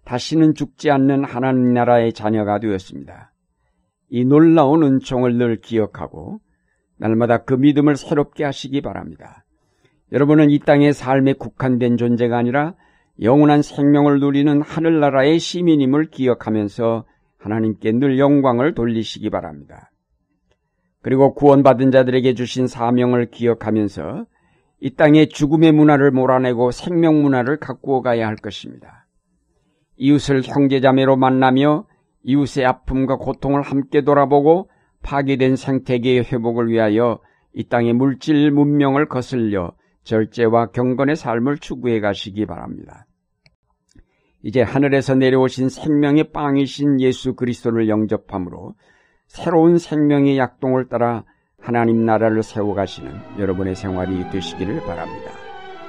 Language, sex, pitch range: Korean, male, 115-145 Hz